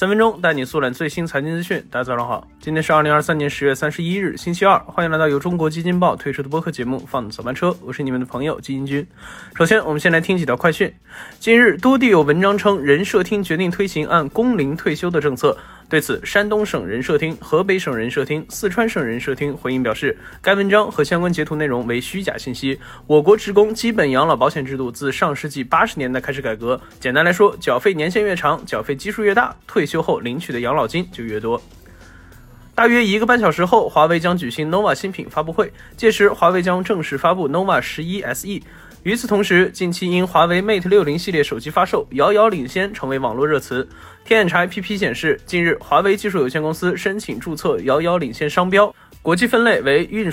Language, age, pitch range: Chinese, 20-39, 140-200 Hz